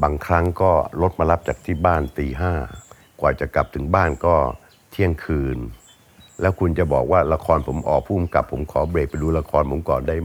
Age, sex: 60-79, male